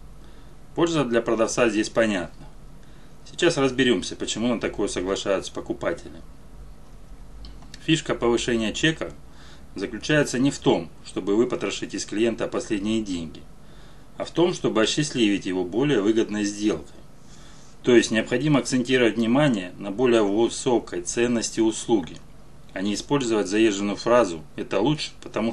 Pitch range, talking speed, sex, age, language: 105-145 Hz, 125 wpm, male, 30-49, Russian